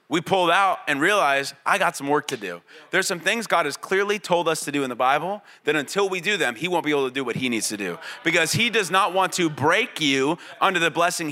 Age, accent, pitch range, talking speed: 30-49, American, 140-195 Hz, 270 wpm